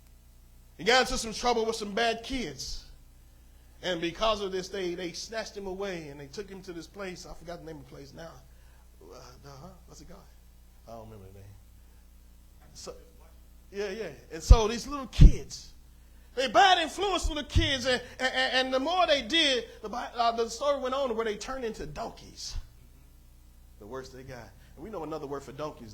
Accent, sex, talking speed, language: American, male, 195 wpm, English